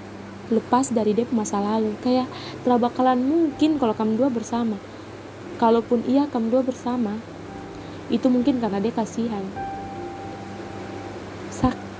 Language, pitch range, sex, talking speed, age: Indonesian, 205-245 Hz, female, 120 wpm, 20-39